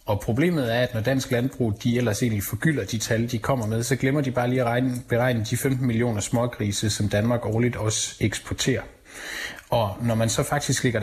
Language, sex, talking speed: Danish, male, 210 wpm